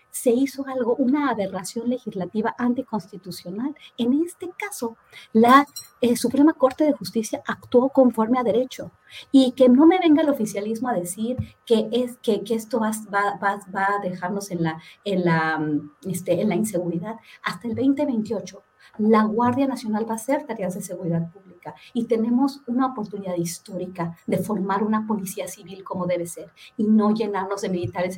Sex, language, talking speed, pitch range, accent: female, Spanish, 165 wpm, 185-245 Hz, American